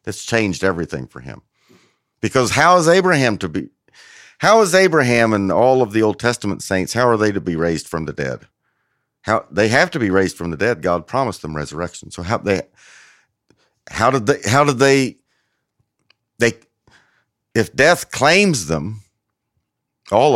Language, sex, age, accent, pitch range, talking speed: English, male, 50-69, American, 90-120 Hz, 170 wpm